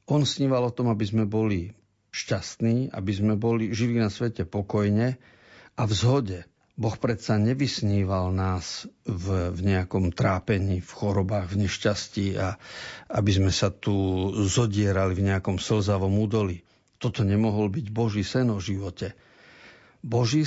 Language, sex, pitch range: Slovak, male, 100-120 Hz